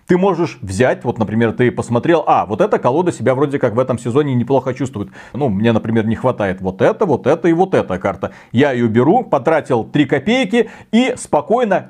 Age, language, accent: 40-59, Russian, native